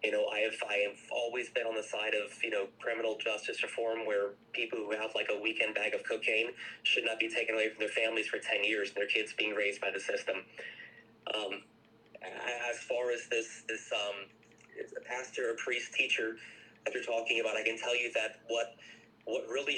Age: 30-49